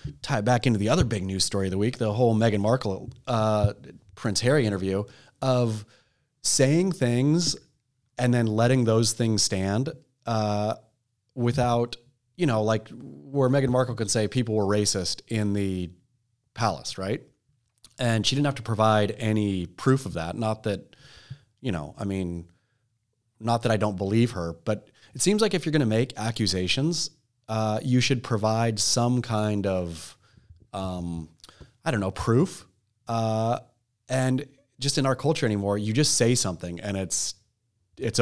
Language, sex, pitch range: English, male, 105-125 Hz